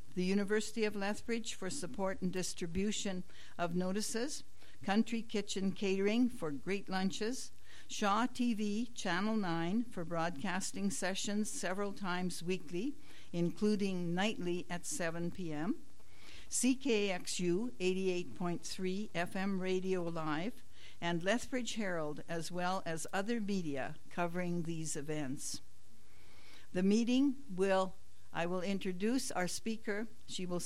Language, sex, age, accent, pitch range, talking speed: English, female, 60-79, American, 165-205 Hz, 110 wpm